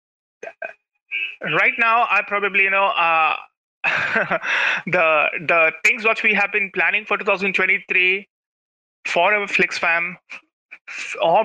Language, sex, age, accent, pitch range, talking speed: English, male, 30-49, Indian, 165-210 Hz, 115 wpm